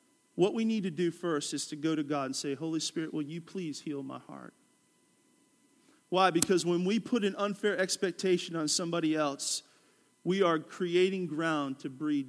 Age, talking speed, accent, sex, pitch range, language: 40-59, 185 wpm, American, male, 170-210 Hz, English